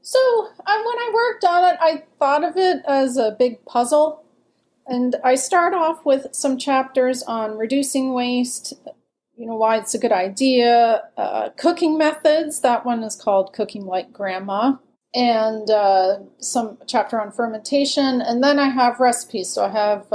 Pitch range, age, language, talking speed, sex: 215-265 Hz, 30-49, English, 165 wpm, female